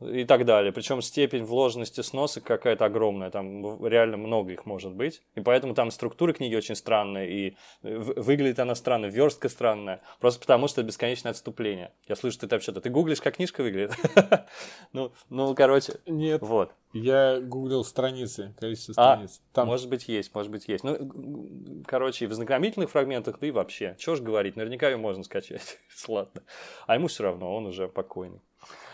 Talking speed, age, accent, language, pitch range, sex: 170 wpm, 20-39, native, Russian, 110-130 Hz, male